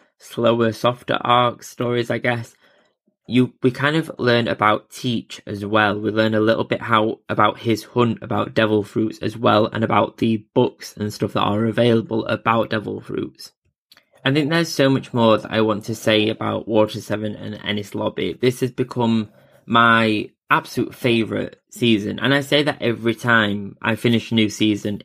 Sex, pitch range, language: male, 110-125 Hz, English